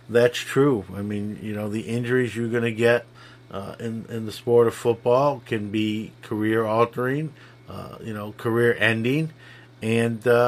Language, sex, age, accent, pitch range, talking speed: English, male, 50-69, American, 105-120 Hz, 170 wpm